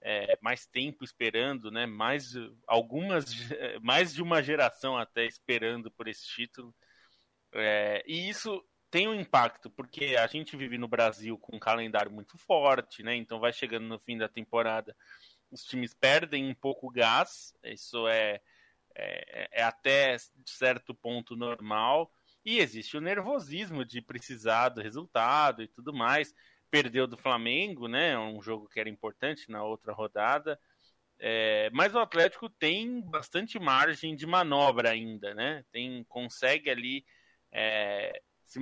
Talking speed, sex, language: 150 wpm, male, Portuguese